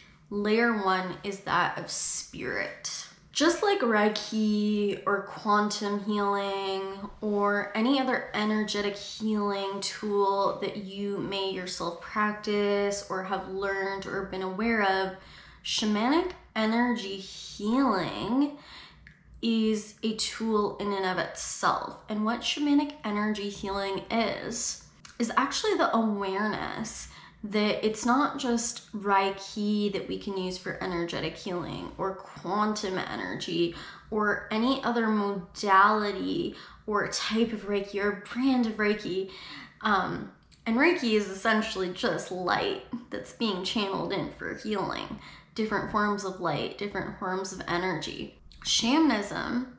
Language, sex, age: English, female, 10-29